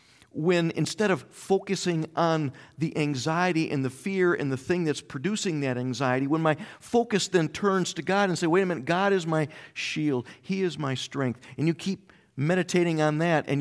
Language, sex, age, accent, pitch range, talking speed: English, male, 50-69, American, 140-195 Hz, 195 wpm